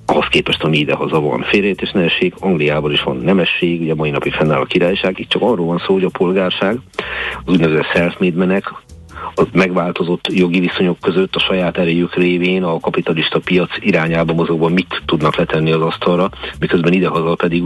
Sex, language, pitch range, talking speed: male, Hungarian, 80-90 Hz, 175 wpm